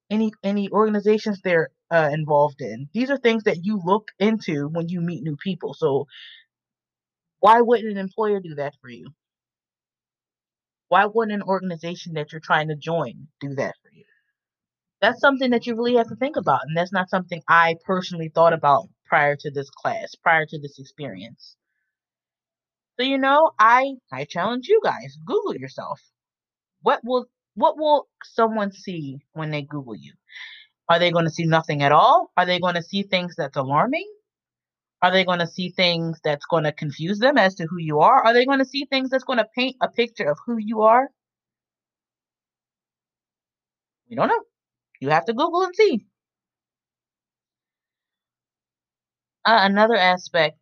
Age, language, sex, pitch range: 20-39, English, female, 155-235 Hz